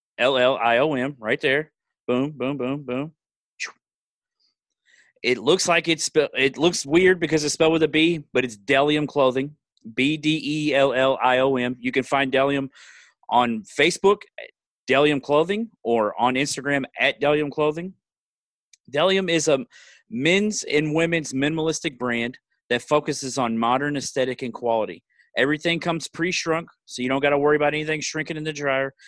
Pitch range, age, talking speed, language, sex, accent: 125-155 Hz, 30-49, 155 wpm, English, male, American